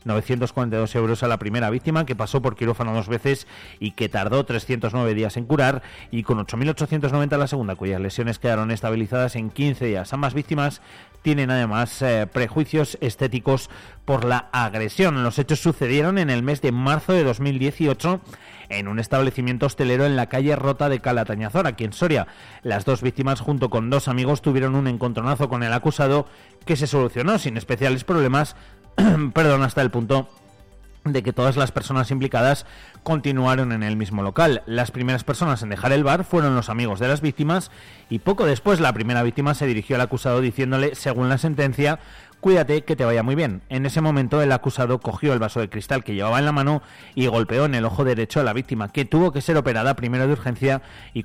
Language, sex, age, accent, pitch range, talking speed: Spanish, male, 40-59, Spanish, 115-145 Hz, 190 wpm